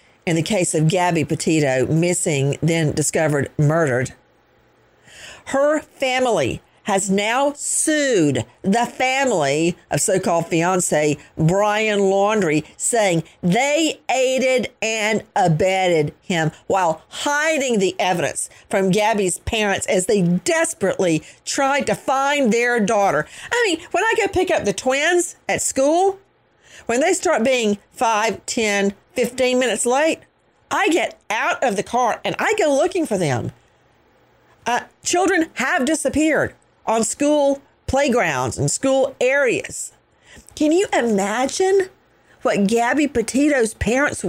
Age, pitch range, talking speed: 50-69, 180-295 Hz, 125 wpm